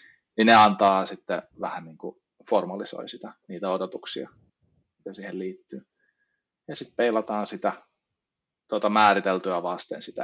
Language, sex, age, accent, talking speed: Finnish, male, 20-39, native, 130 wpm